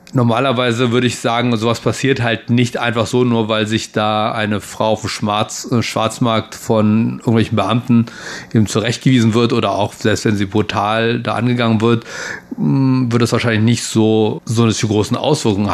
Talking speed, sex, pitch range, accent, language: 170 wpm, male, 105-125 Hz, German, German